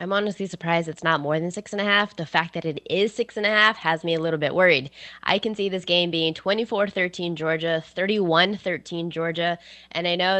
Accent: American